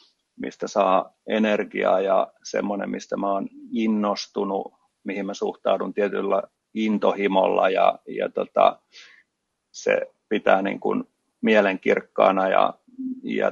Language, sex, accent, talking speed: Finnish, male, native, 100 wpm